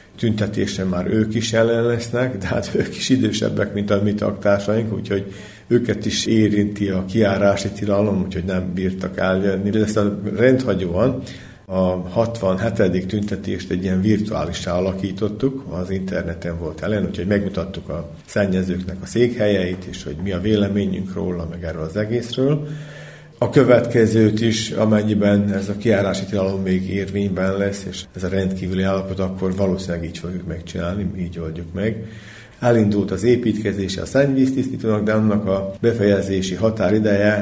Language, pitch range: Hungarian, 95-105 Hz